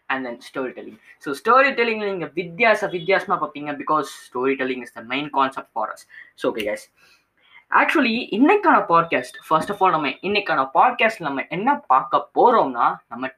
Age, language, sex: 10-29, Tamil, female